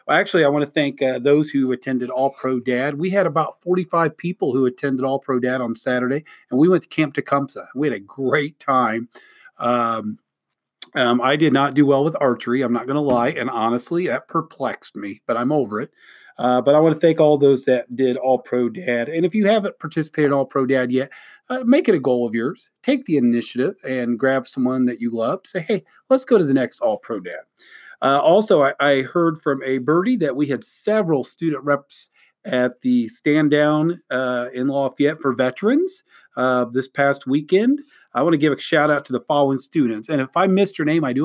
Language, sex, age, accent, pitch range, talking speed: English, male, 40-59, American, 130-165 Hz, 225 wpm